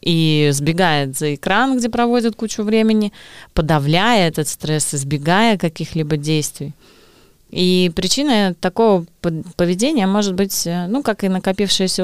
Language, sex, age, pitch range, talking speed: Russian, female, 30-49, 155-210 Hz, 120 wpm